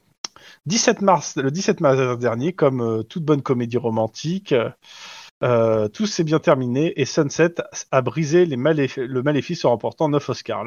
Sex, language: male, French